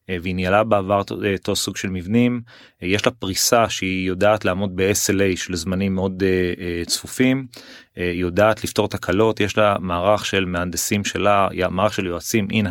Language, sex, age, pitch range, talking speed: Hebrew, male, 30-49, 95-115 Hz, 155 wpm